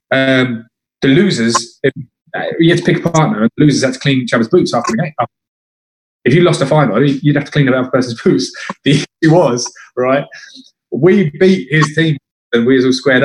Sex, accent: male, British